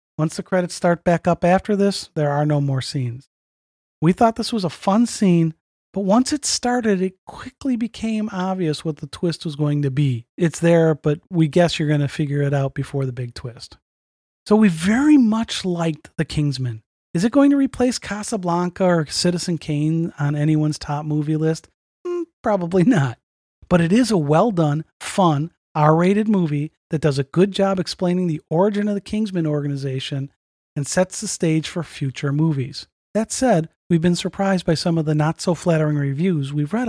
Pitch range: 150-200 Hz